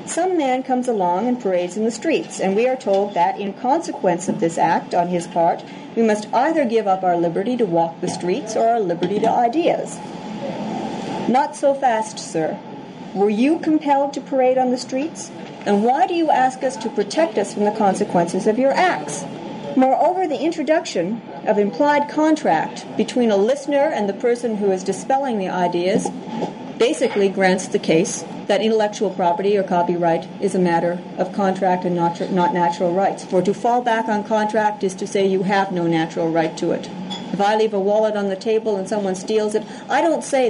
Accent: American